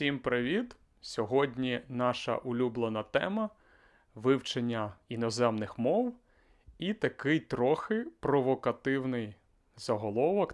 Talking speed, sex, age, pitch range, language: 80 wpm, male, 30-49, 110-140 Hz, Ukrainian